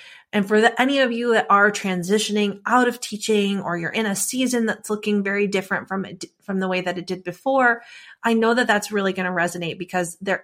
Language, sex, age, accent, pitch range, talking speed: English, female, 20-39, American, 180-220 Hz, 230 wpm